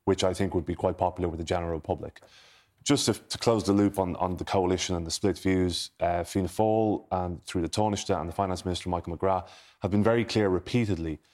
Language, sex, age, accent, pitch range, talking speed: English, male, 20-39, British, 85-100 Hz, 220 wpm